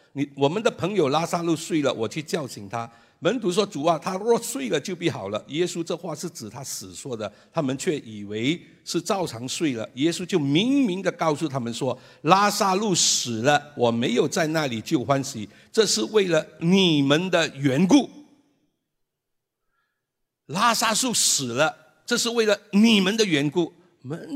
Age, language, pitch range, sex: 60-79, Chinese, 115-175 Hz, male